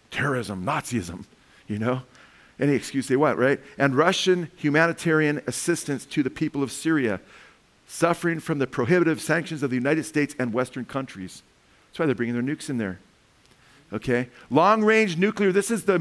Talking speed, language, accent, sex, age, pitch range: 170 wpm, English, American, male, 50-69, 125-165 Hz